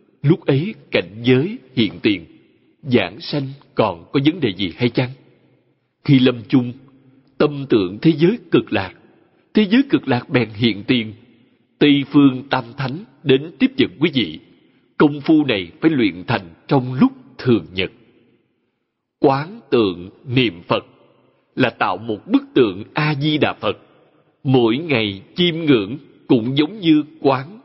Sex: male